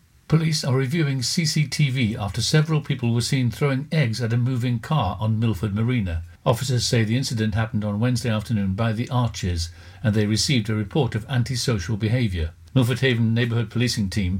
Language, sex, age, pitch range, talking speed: English, male, 60-79, 110-130 Hz, 175 wpm